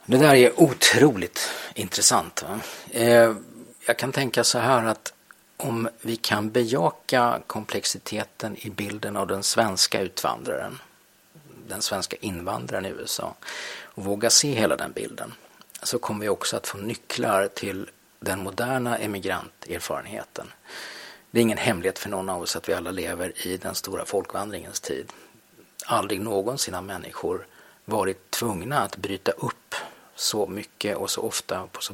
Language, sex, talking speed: English, male, 145 wpm